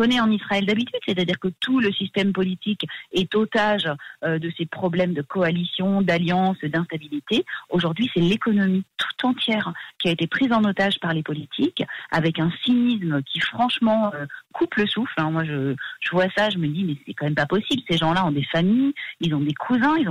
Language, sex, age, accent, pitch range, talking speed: French, female, 40-59, French, 170-220 Hz, 205 wpm